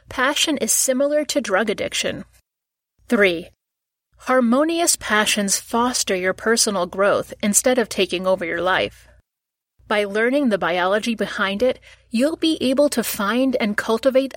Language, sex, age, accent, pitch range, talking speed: English, female, 30-49, American, 200-250 Hz, 135 wpm